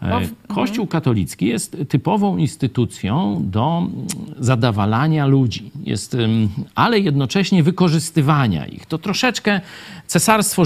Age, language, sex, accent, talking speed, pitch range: 50-69, Polish, male, native, 85 wpm, 135-205 Hz